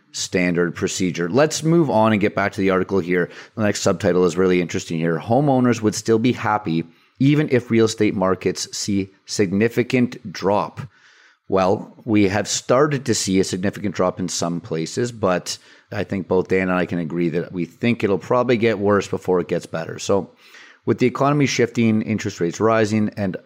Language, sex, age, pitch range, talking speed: English, male, 30-49, 95-120 Hz, 185 wpm